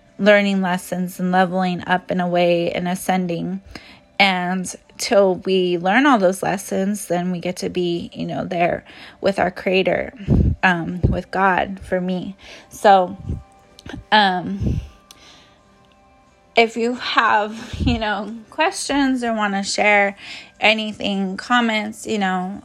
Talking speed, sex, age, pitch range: 130 wpm, female, 20-39, 185-210 Hz